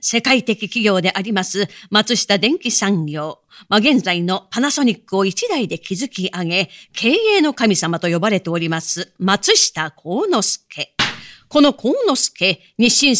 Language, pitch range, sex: Japanese, 180-245 Hz, female